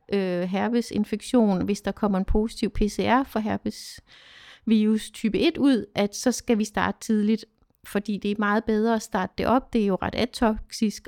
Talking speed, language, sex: 180 wpm, Danish, female